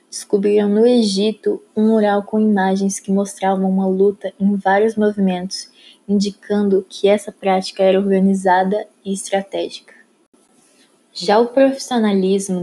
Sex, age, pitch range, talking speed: female, 20-39, 185-215 Hz, 120 wpm